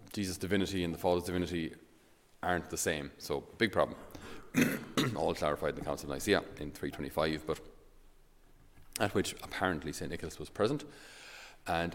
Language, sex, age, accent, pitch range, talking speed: English, male, 30-49, Irish, 80-95 Hz, 150 wpm